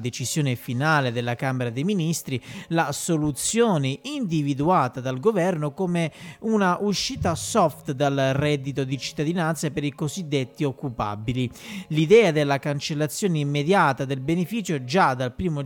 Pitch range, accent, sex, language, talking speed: 140-185 Hz, native, male, Italian, 125 wpm